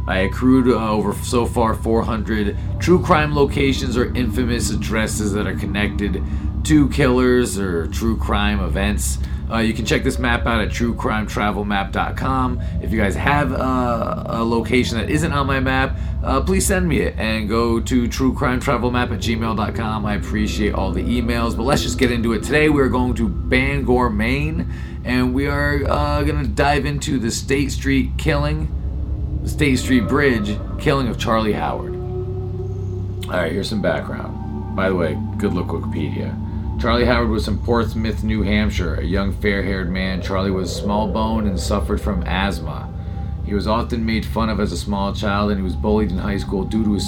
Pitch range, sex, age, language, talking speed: 85-110 Hz, male, 30-49, English, 180 wpm